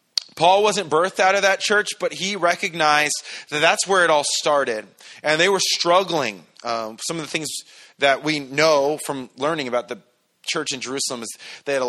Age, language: 30-49, English